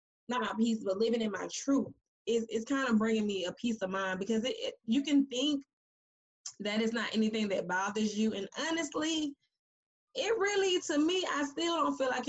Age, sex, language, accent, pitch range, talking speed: 20-39, female, English, American, 190-245 Hz, 205 wpm